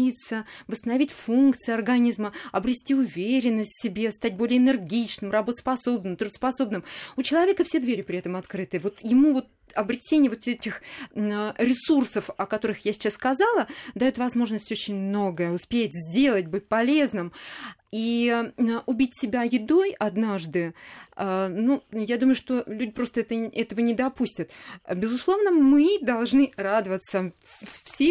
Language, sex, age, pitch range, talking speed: Russian, female, 20-39, 200-250 Hz, 125 wpm